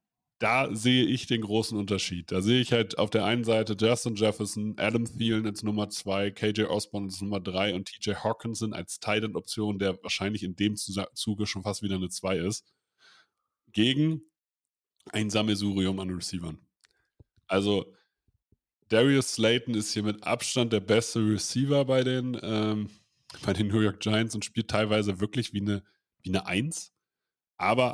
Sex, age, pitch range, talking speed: male, 30-49, 100-125 Hz, 160 wpm